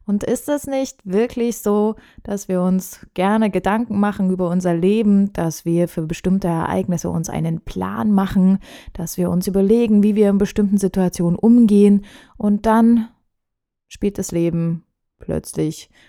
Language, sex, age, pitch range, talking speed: German, female, 20-39, 175-215 Hz, 150 wpm